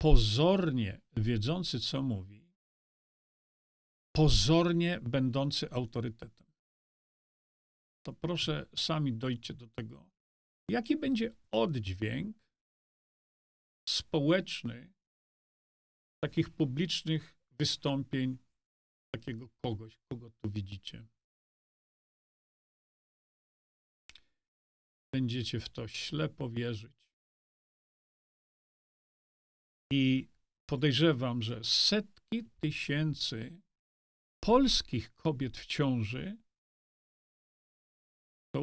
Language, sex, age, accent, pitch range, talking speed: Polish, male, 40-59, native, 110-155 Hz, 60 wpm